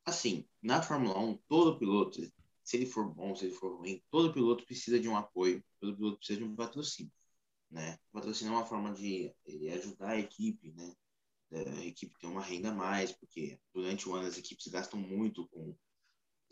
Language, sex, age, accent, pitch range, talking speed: Portuguese, male, 20-39, Brazilian, 95-125 Hz, 200 wpm